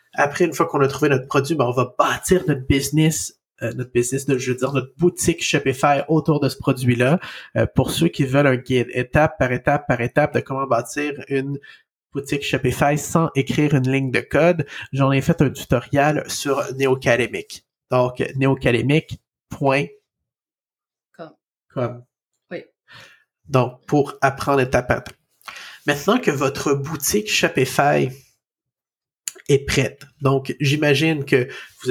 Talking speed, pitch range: 145 wpm, 130-150 Hz